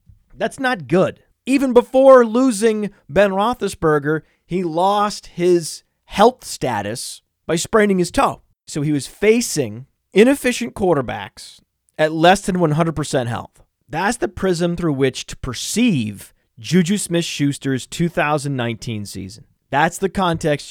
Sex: male